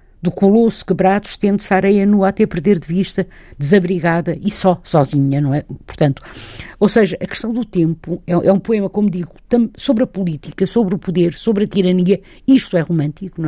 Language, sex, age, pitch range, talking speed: Portuguese, female, 50-69, 175-210 Hz, 185 wpm